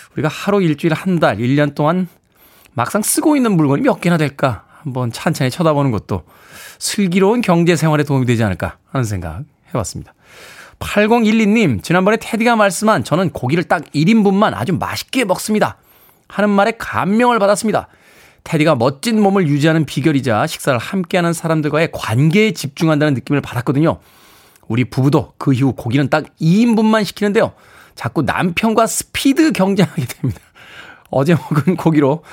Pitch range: 145-205 Hz